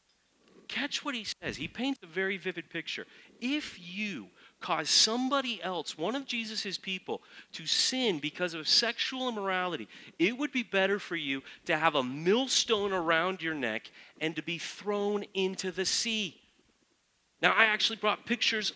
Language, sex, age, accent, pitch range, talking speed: English, male, 40-59, American, 185-245 Hz, 160 wpm